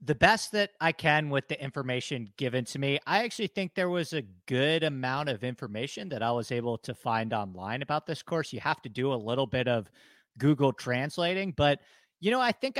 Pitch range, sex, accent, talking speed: 125-155 Hz, male, American, 215 wpm